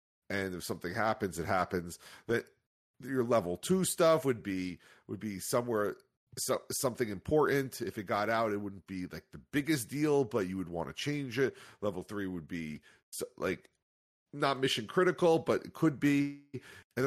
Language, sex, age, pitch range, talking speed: English, male, 40-59, 95-125 Hz, 170 wpm